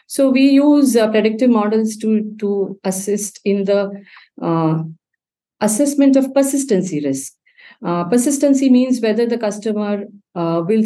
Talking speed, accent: 135 wpm, Indian